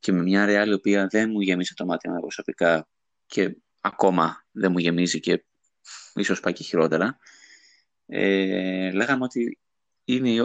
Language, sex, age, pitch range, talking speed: Greek, male, 20-39, 95-125 Hz, 145 wpm